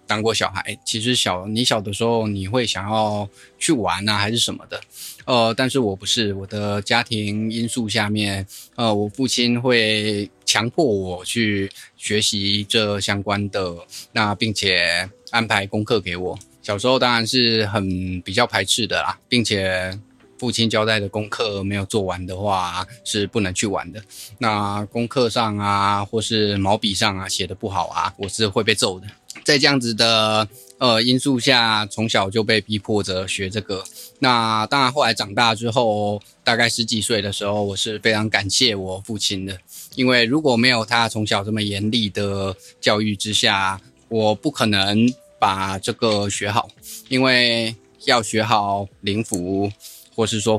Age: 20-39